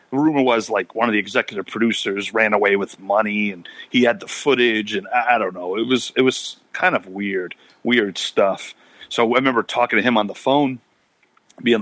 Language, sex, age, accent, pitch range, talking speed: English, male, 40-59, American, 100-130 Hz, 205 wpm